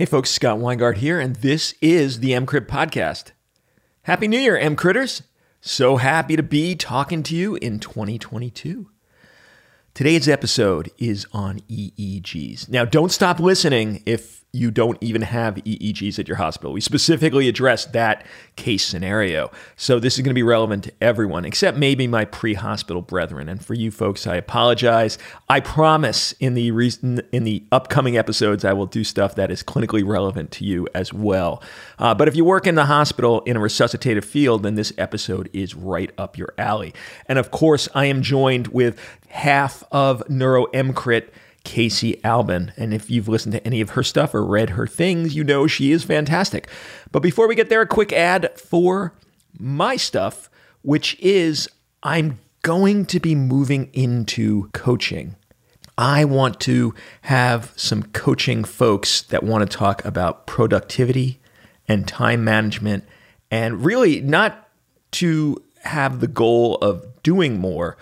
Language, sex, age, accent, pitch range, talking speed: English, male, 40-59, American, 110-150 Hz, 165 wpm